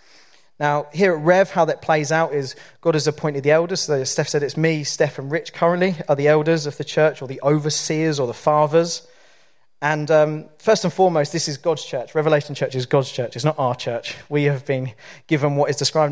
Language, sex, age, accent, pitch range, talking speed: English, male, 30-49, British, 135-155 Hz, 225 wpm